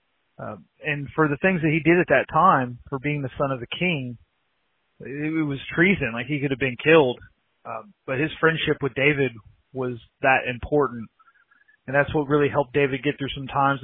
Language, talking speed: English, 205 wpm